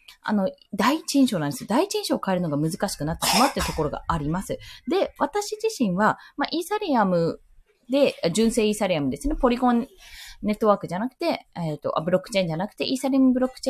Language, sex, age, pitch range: Japanese, female, 20-39, 180-285 Hz